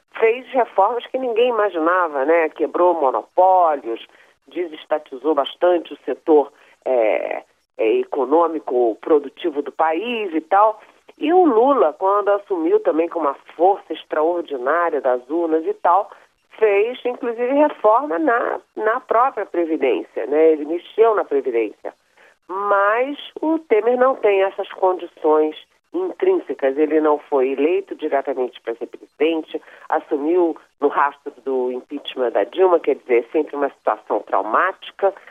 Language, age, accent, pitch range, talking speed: Portuguese, 40-59, Brazilian, 155-235 Hz, 125 wpm